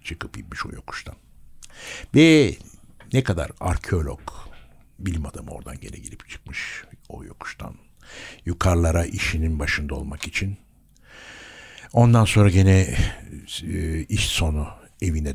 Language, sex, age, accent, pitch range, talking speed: Turkish, male, 60-79, native, 75-105 Hz, 105 wpm